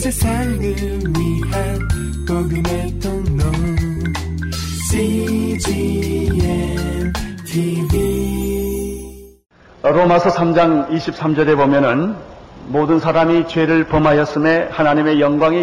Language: Korean